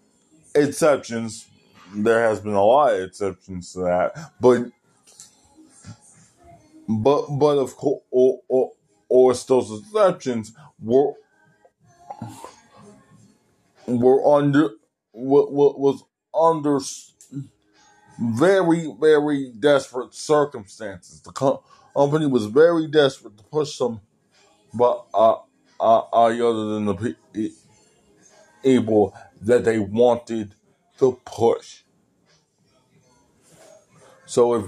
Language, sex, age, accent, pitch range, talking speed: English, male, 20-39, American, 110-145 Hz, 90 wpm